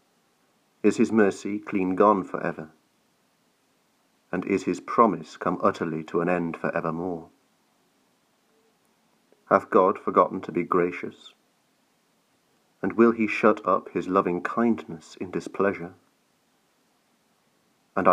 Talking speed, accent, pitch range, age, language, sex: 115 wpm, British, 85-100 Hz, 40-59, English, male